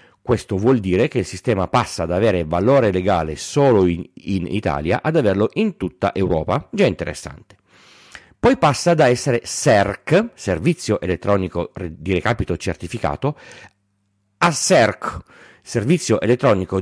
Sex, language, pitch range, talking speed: male, Italian, 95-125 Hz, 130 wpm